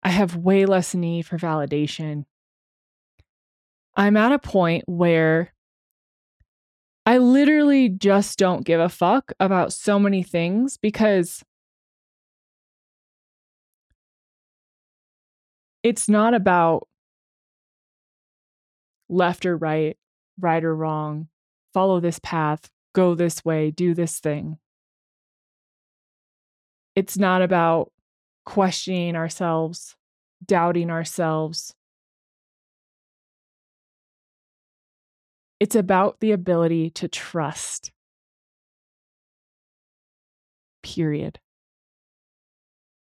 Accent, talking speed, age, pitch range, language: American, 80 wpm, 20-39, 160-190 Hz, English